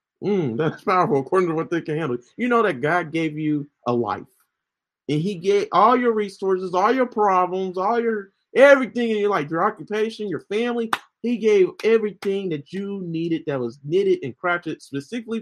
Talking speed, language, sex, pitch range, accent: 185 wpm, English, male, 155-215 Hz, American